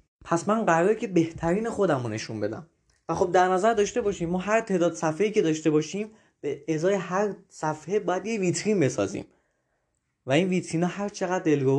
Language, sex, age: Persian, male, 20-39